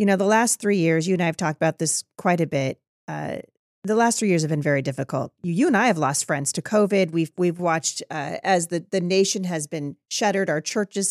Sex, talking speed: female, 255 wpm